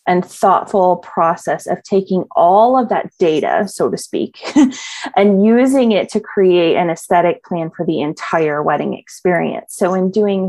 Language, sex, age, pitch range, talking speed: English, female, 30-49, 180-230 Hz, 160 wpm